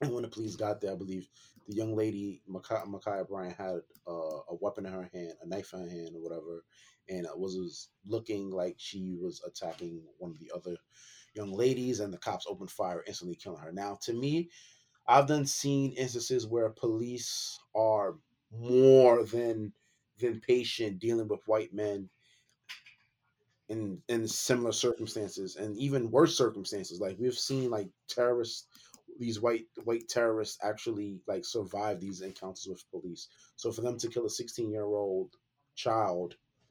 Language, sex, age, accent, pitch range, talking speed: English, male, 20-39, American, 100-130 Hz, 165 wpm